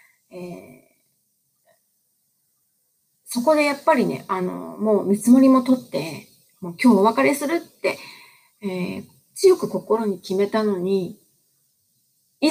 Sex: female